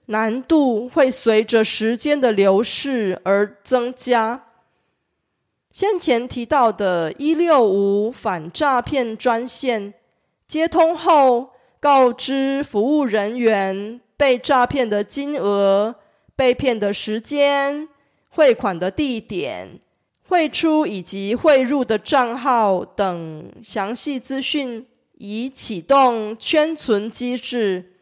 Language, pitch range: Korean, 205-270 Hz